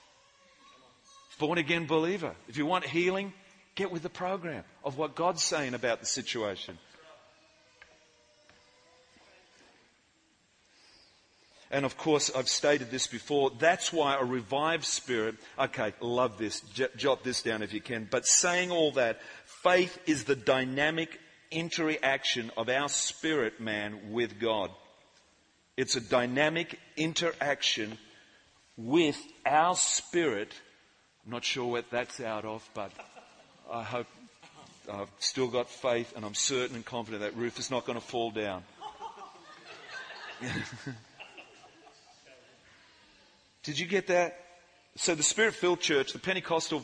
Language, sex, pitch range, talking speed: English, male, 120-170 Hz, 125 wpm